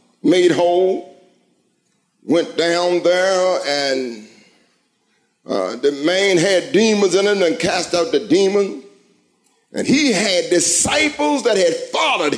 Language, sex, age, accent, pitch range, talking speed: English, male, 50-69, American, 195-315 Hz, 120 wpm